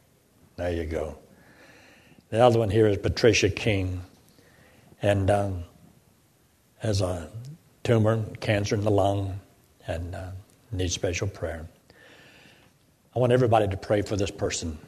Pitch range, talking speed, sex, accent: 95-110 Hz, 130 wpm, male, American